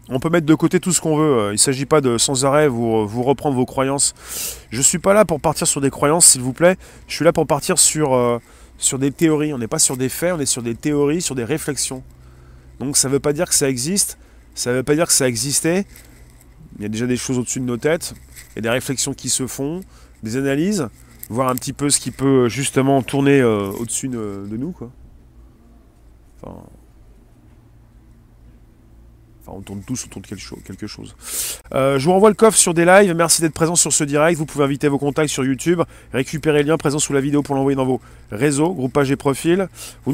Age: 30-49